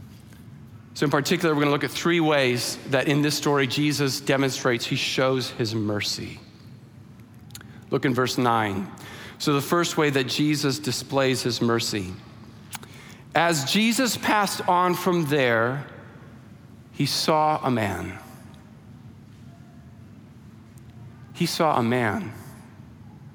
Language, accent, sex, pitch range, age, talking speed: English, American, male, 120-185 Hz, 40-59, 120 wpm